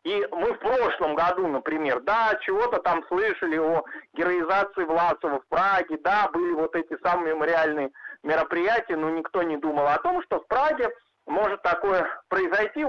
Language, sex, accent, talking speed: Russian, male, native, 160 wpm